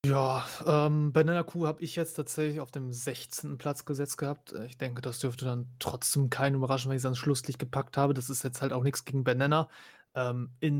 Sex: male